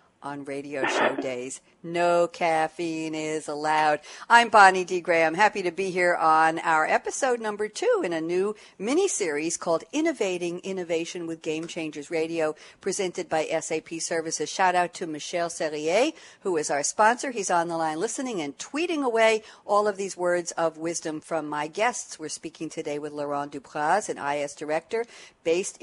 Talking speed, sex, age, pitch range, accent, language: 165 wpm, female, 60-79, 155-200 Hz, American, English